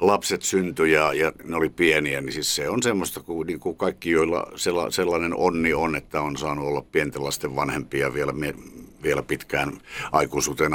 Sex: male